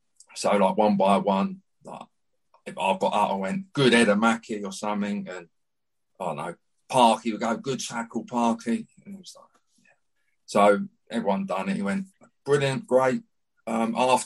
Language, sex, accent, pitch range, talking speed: English, male, British, 110-130 Hz, 175 wpm